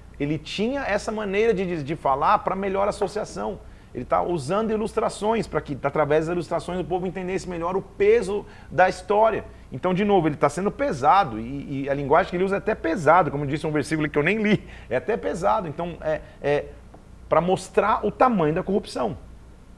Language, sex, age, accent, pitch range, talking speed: Portuguese, male, 40-59, Brazilian, 150-205 Hz, 200 wpm